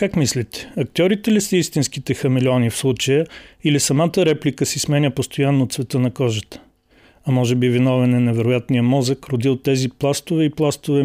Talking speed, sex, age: 165 wpm, male, 40-59